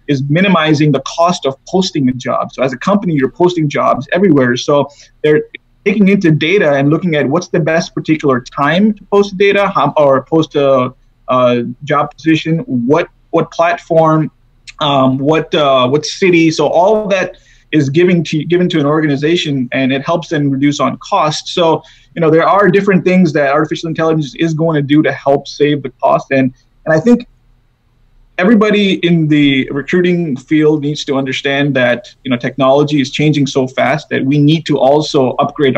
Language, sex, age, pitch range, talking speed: English, male, 30-49, 135-165 Hz, 185 wpm